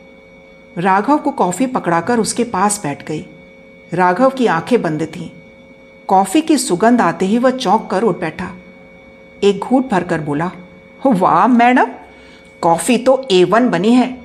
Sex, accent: female, native